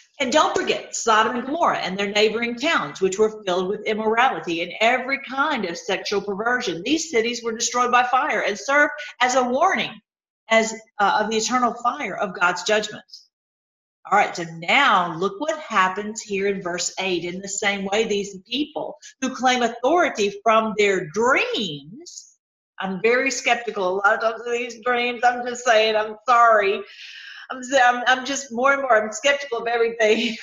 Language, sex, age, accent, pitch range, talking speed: English, female, 50-69, American, 200-250 Hz, 175 wpm